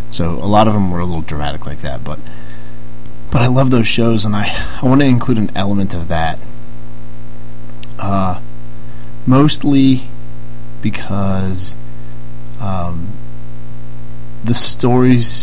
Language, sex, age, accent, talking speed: English, male, 30-49, American, 130 wpm